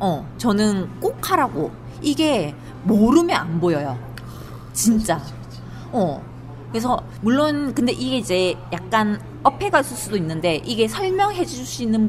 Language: Korean